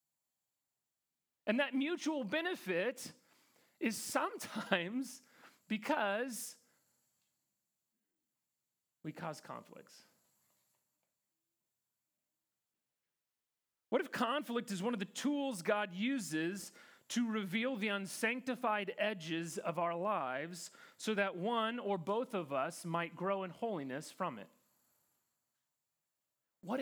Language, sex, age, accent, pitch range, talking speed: English, male, 30-49, American, 155-225 Hz, 95 wpm